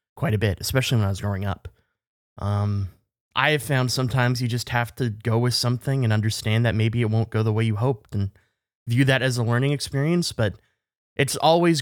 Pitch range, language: 110-140 Hz, English